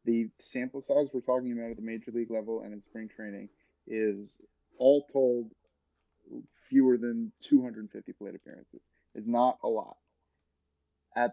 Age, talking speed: 30-49, 150 wpm